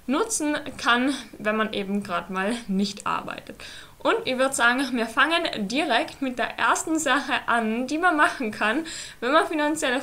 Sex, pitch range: female, 220-285 Hz